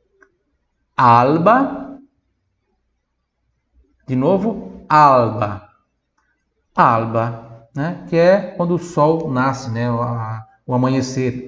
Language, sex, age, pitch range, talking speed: Italian, male, 50-69, 120-185 Hz, 80 wpm